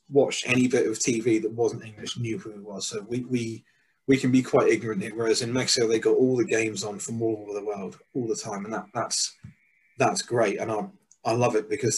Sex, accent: male, British